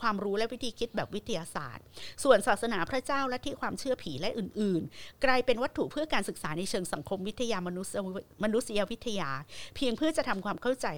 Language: Thai